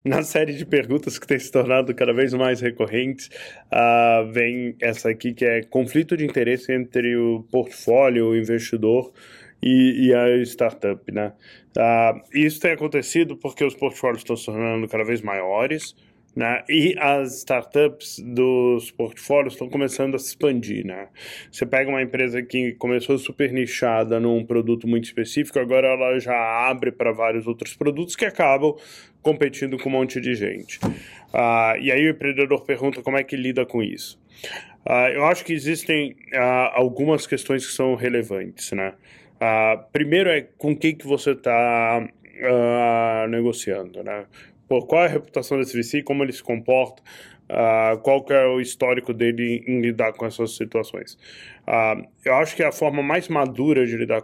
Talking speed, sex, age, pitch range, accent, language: 165 wpm, male, 20-39, 115-140 Hz, Brazilian, Portuguese